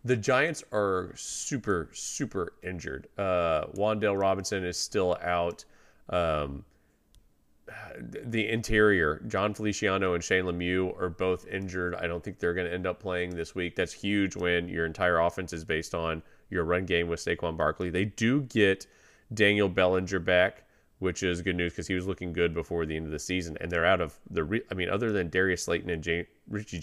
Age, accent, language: 30-49, American, English